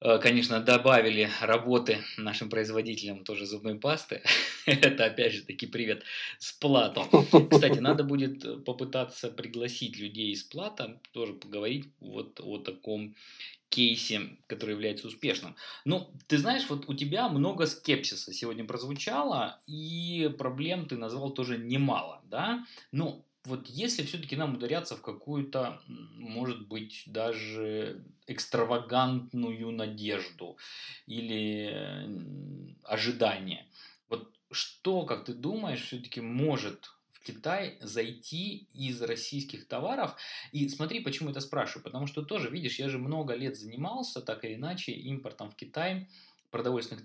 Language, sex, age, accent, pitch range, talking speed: Russian, male, 20-39, native, 110-145 Hz, 125 wpm